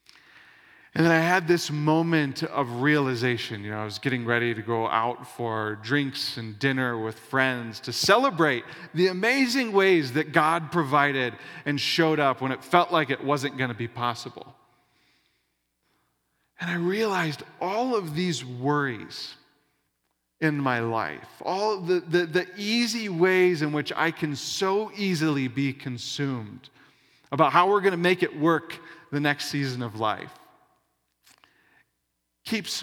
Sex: male